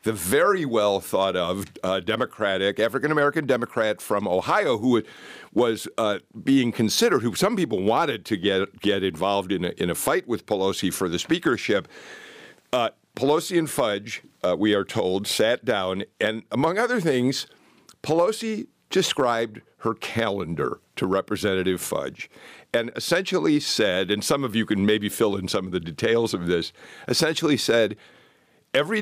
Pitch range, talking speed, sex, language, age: 100-140 Hz, 155 wpm, male, English, 50-69